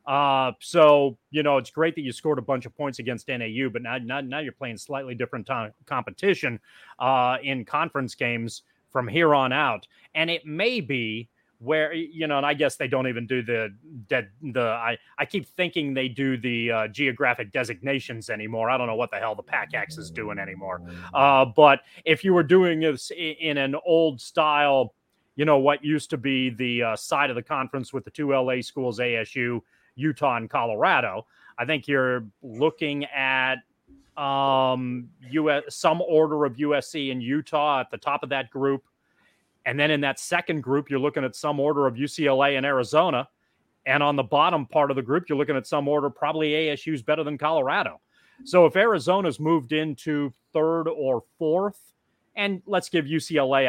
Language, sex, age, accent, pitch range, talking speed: English, male, 30-49, American, 125-155 Hz, 190 wpm